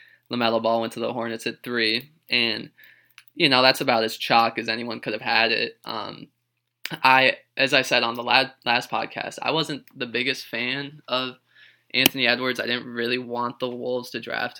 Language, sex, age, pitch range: English, male, 20-39, 115-135 Hz